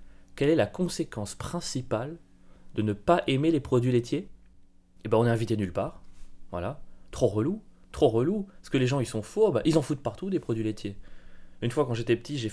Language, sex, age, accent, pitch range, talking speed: French, male, 20-39, French, 95-120 Hz, 215 wpm